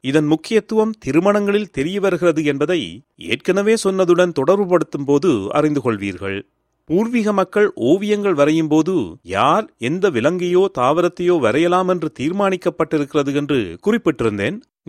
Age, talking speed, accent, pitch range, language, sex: 40-59, 110 wpm, native, 135-190 Hz, Tamil, male